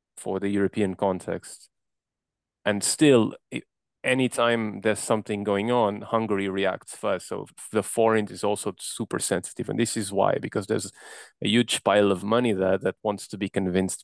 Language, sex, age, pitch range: English, male, 30-49, 100-115 Hz